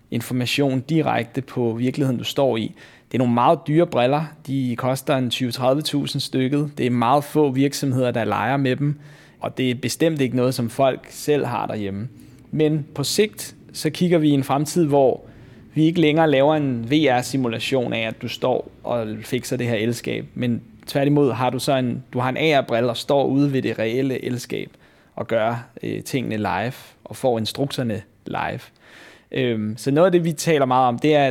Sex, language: male, Danish